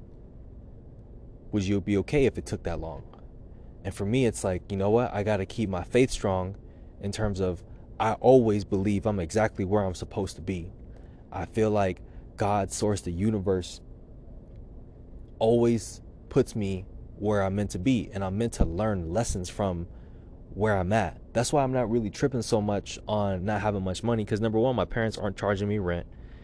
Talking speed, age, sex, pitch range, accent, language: 190 wpm, 20-39, male, 95-110 Hz, American, English